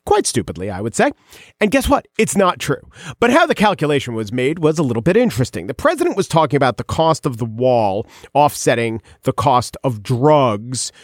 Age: 40-59